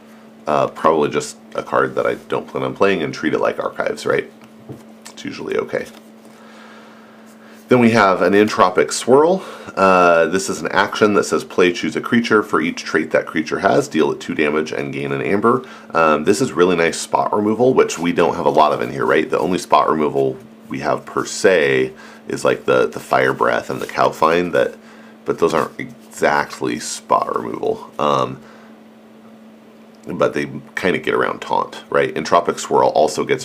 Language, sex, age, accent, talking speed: English, male, 40-59, American, 190 wpm